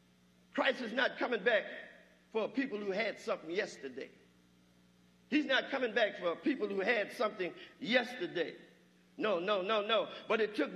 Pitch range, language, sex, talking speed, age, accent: 205-285 Hz, English, male, 155 wpm, 50-69, American